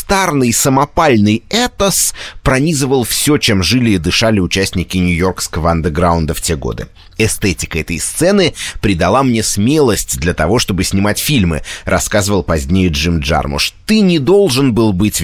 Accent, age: native, 30-49